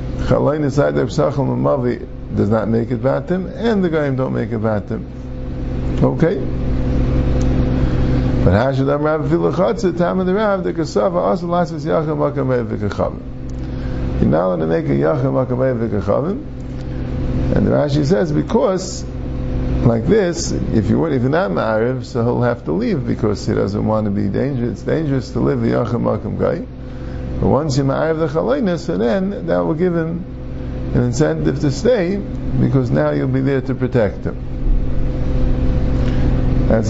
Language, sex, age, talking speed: English, male, 50-69, 155 wpm